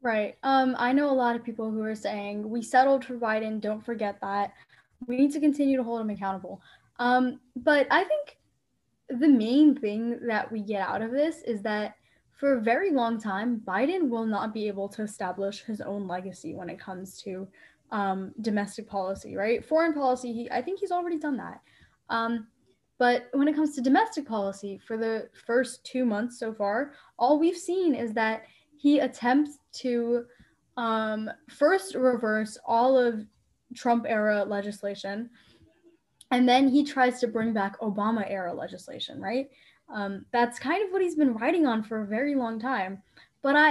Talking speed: 180 wpm